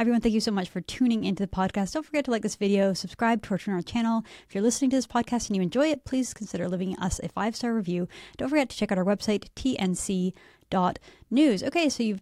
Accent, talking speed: American, 245 wpm